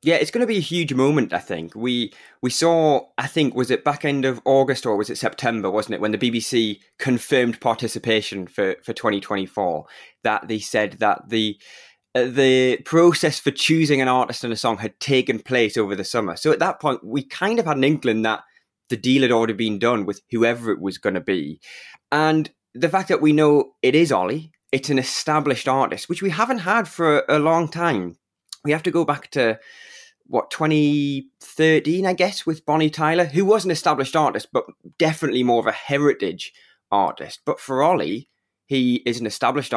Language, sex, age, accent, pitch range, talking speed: English, male, 20-39, British, 115-155 Hz, 200 wpm